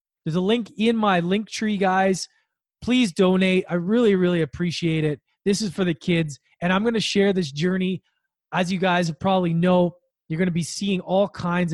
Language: English